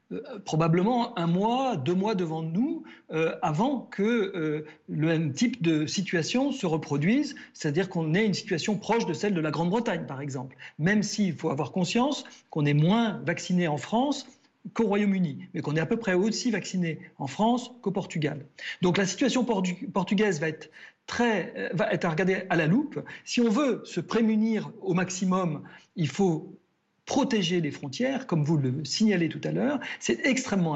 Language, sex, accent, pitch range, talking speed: French, male, French, 160-220 Hz, 185 wpm